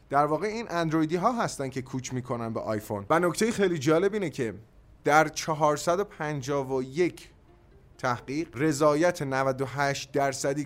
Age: 30-49